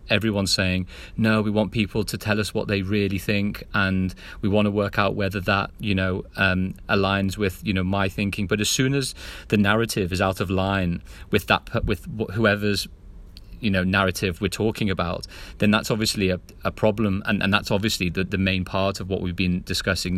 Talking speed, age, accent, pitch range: 210 wpm, 30-49, British, 95-105 Hz